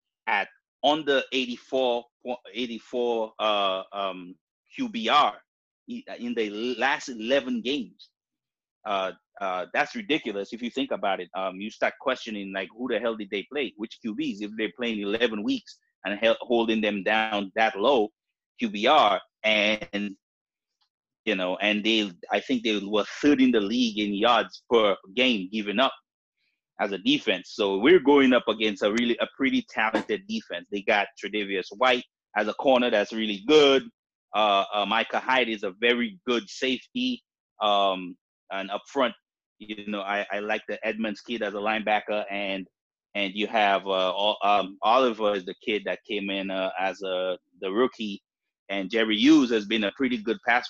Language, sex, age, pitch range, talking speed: English, male, 30-49, 100-125 Hz, 165 wpm